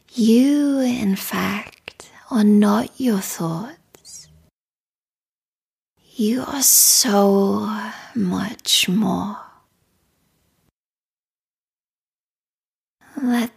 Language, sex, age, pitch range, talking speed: English, female, 20-39, 195-245 Hz, 60 wpm